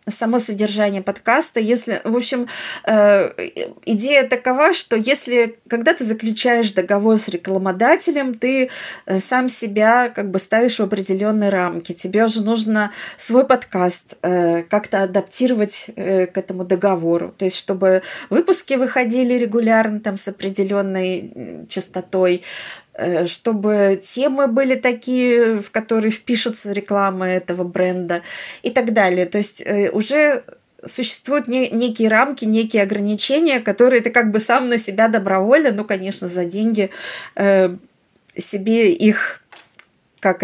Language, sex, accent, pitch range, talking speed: Russian, female, native, 190-245 Hz, 125 wpm